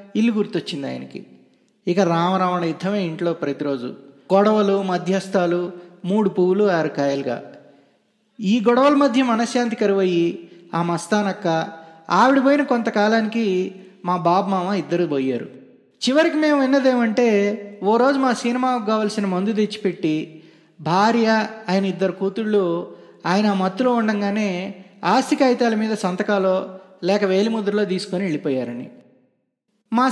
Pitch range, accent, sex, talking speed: 180-235 Hz, native, male, 110 wpm